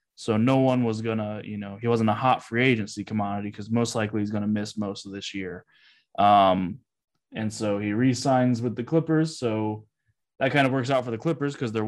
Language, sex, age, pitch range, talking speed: English, male, 20-39, 105-135 Hz, 225 wpm